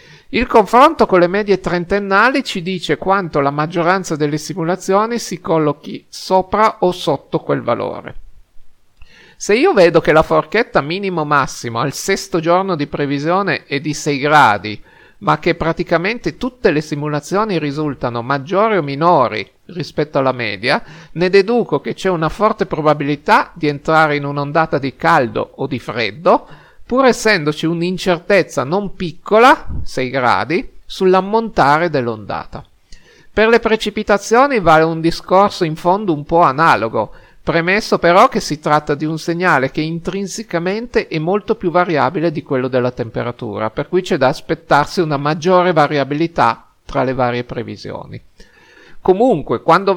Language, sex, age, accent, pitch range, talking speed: Italian, male, 50-69, native, 150-195 Hz, 140 wpm